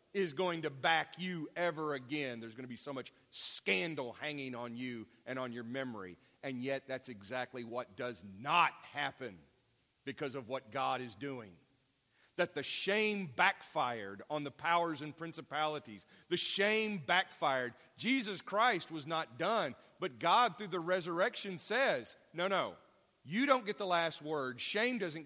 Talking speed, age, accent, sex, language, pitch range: 160 wpm, 40-59, American, male, English, 125-180 Hz